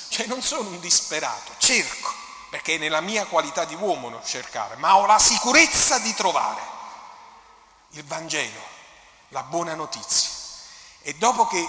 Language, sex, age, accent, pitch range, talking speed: Italian, male, 40-59, native, 145-210 Hz, 150 wpm